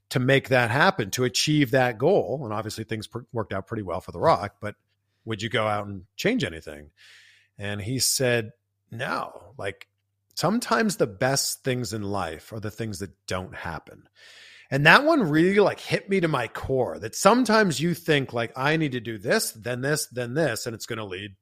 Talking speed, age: 200 wpm, 40-59